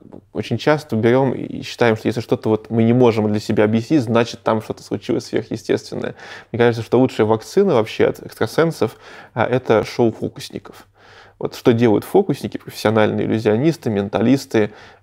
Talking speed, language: 145 wpm, Russian